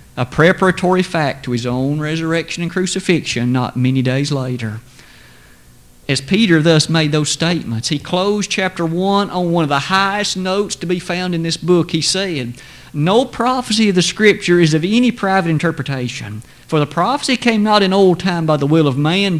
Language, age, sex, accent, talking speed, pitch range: English, 50-69, male, American, 185 wpm, 135-195 Hz